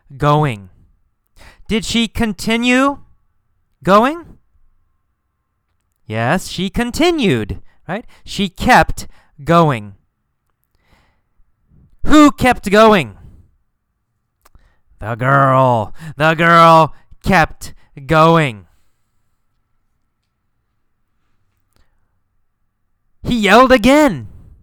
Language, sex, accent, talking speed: English, male, American, 60 wpm